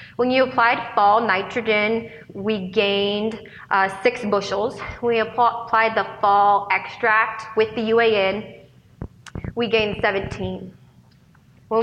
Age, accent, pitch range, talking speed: 20-39, American, 195-230 Hz, 115 wpm